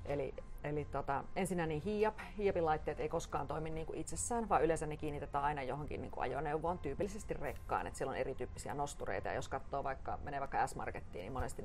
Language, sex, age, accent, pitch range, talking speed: Finnish, female, 40-59, native, 120-160 Hz, 180 wpm